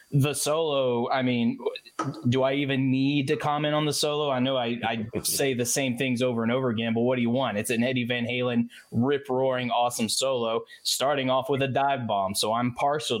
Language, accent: English, American